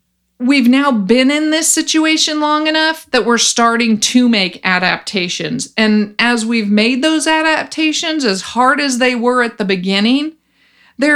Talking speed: 155 wpm